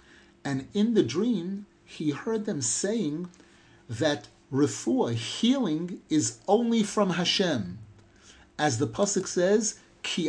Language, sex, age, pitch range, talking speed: English, male, 50-69, 150-210 Hz, 115 wpm